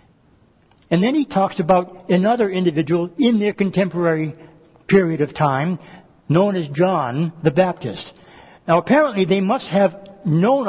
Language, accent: English, American